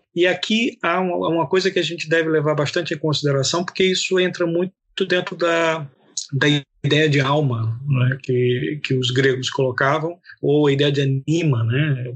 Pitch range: 145-190 Hz